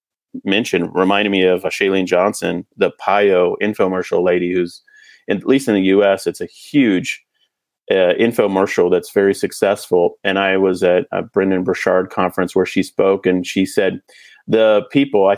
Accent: American